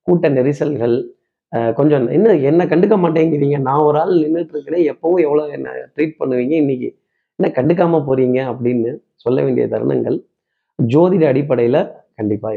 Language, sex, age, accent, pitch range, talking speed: Tamil, male, 30-49, native, 125-160 Hz, 130 wpm